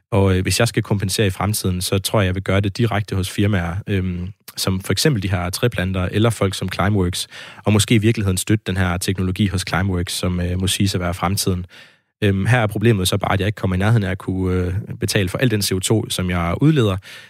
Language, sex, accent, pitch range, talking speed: Danish, male, native, 95-105 Hz, 245 wpm